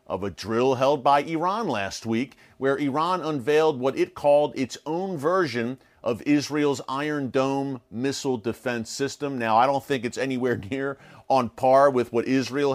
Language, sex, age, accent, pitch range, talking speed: English, male, 40-59, American, 120-140 Hz, 170 wpm